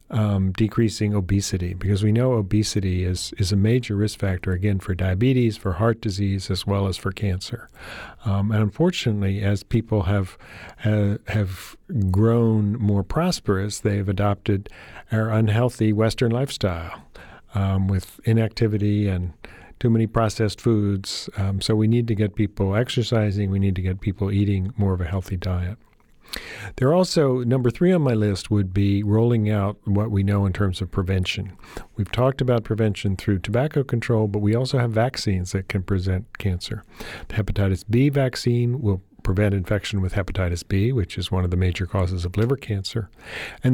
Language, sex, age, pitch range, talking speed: English, male, 50-69, 95-115 Hz, 170 wpm